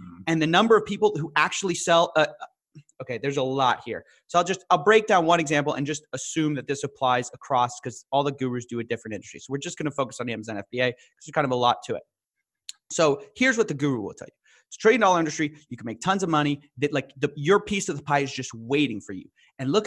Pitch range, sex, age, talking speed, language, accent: 130-175 Hz, male, 30-49, 270 wpm, English, American